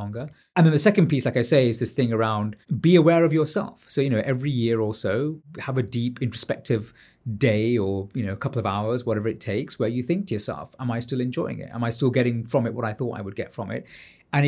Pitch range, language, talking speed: 110-145 Hz, English, 260 wpm